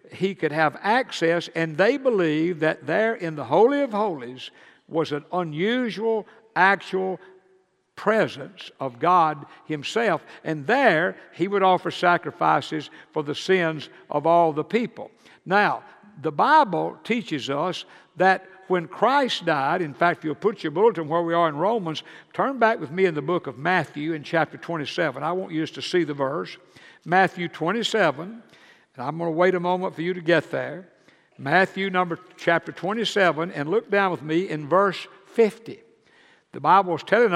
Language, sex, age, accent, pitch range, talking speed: English, male, 60-79, American, 160-200 Hz, 170 wpm